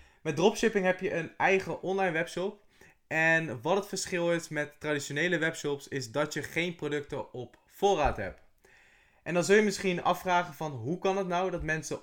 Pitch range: 135-175 Hz